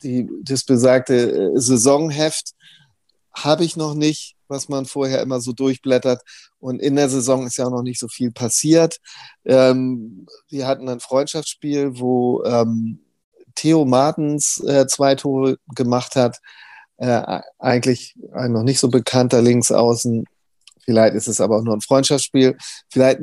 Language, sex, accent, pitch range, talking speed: German, male, German, 120-145 Hz, 145 wpm